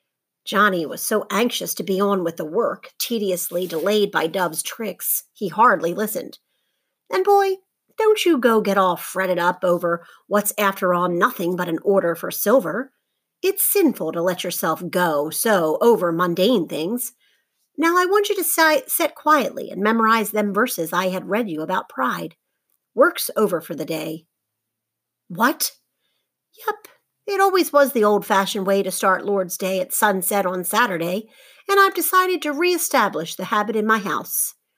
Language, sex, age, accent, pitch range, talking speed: English, female, 40-59, American, 185-290 Hz, 165 wpm